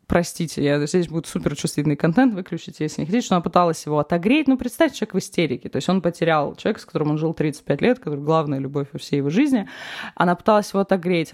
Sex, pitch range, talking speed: female, 155-195 Hz, 220 wpm